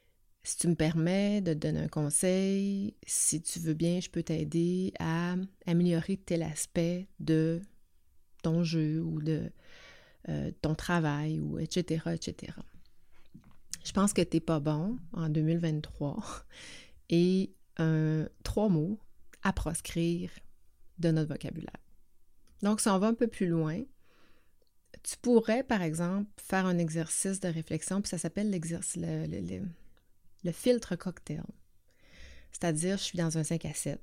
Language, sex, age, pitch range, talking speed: French, female, 30-49, 155-185 Hz, 150 wpm